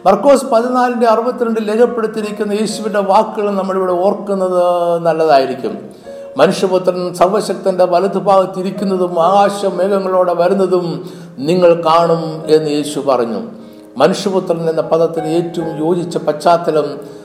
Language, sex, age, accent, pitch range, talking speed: Malayalam, male, 60-79, native, 165-220 Hz, 95 wpm